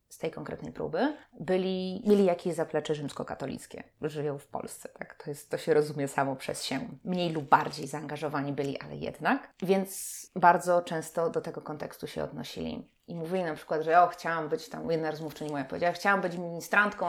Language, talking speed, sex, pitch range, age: Polish, 185 wpm, female, 155-185 Hz, 20-39